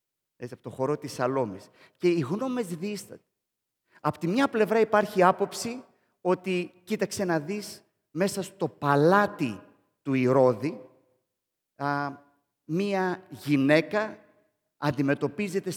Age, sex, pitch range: 30-49, male, 145-195 Hz